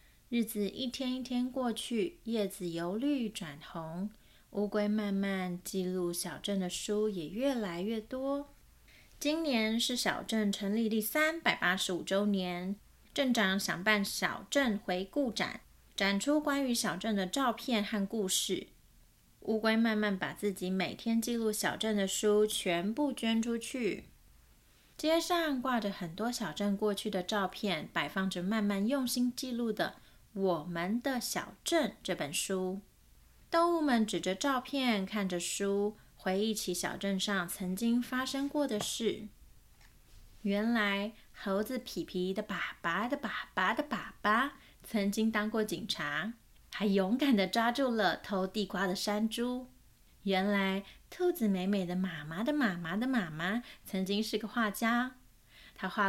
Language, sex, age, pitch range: Chinese, female, 30-49, 190-240 Hz